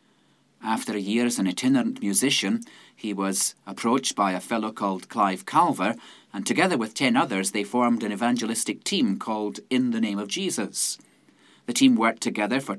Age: 30-49